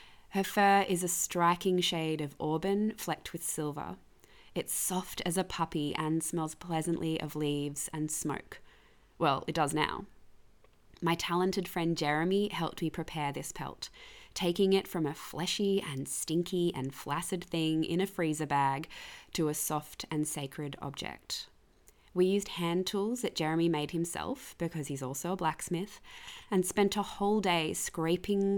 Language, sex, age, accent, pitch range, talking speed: English, female, 20-39, Australian, 155-185 Hz, 155 wpm